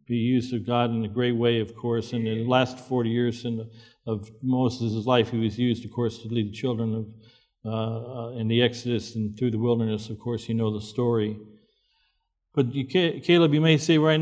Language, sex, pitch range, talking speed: English, male, 115-140 Hz, 220 wpm